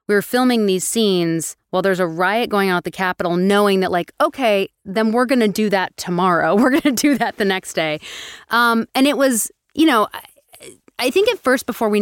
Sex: female